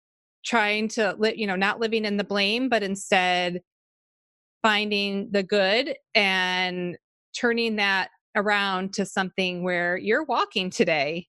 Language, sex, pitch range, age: English, female, 190-235 Hz, 30-49